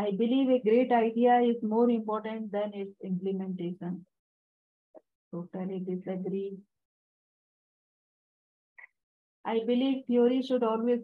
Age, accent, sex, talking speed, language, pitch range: 50-69, Indian, female, 100 wpm, English, 195-240 Hz